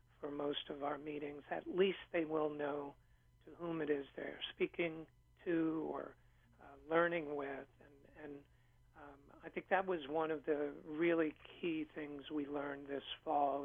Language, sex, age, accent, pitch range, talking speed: English, male, 50-69, American, 140-155 Hz, 165 wpm